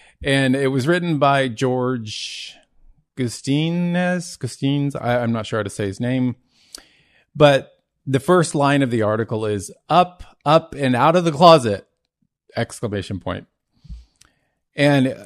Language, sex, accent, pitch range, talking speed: English, male, American, 105-135 Hz, 135 wpm